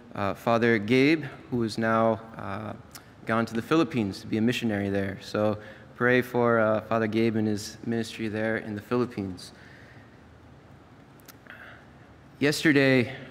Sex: male